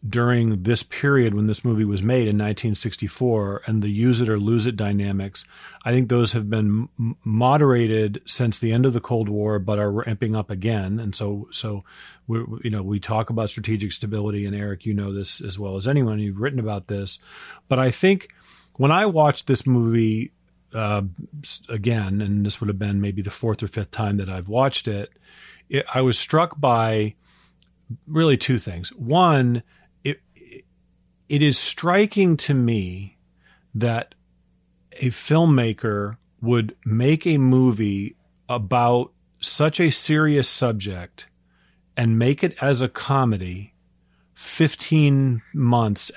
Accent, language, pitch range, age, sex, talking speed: American, English, 105-130 Hz, 40-59, male, 155 wpm